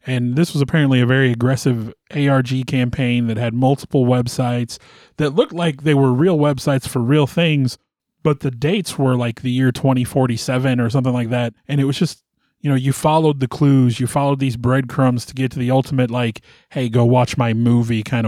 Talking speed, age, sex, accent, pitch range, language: 200 wpm, 30-49, male, American, 120-155 Hz, English